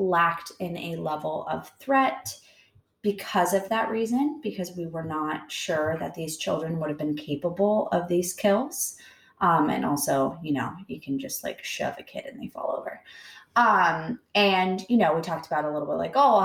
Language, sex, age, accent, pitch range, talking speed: English, female, 20-39, American, 155-205 Hz, 195 wpm